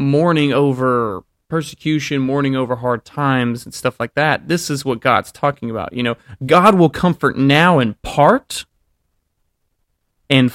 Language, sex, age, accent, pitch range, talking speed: English, male, 30-49, American, 120-150 Hz, 150 wpm